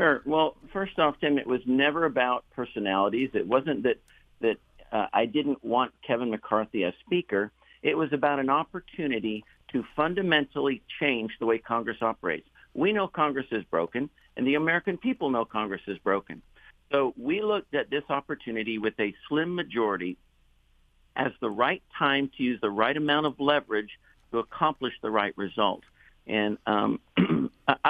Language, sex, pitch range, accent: English, male, 110-150 Hz, American